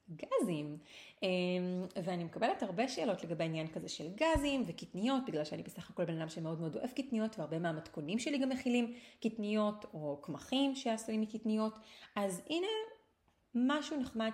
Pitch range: 170-230 Hz